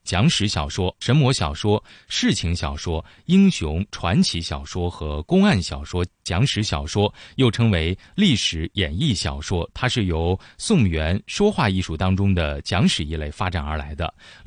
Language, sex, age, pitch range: Chinese, male, 20-39, 85-115 Hz